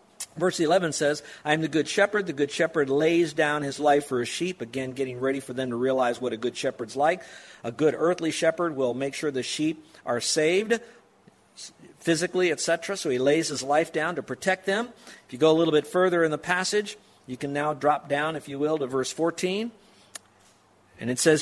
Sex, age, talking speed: male, 50-69, 215 wpm